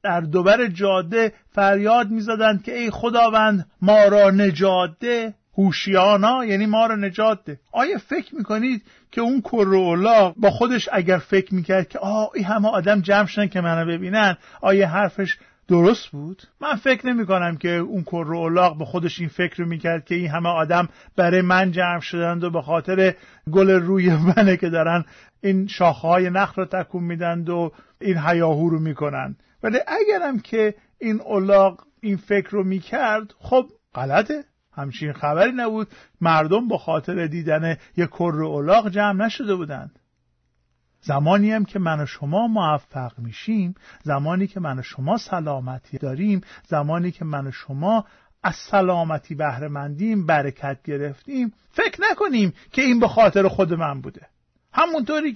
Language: Persian